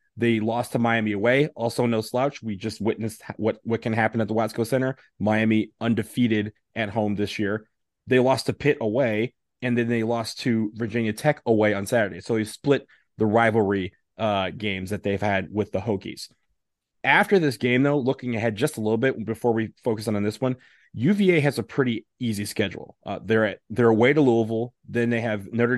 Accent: American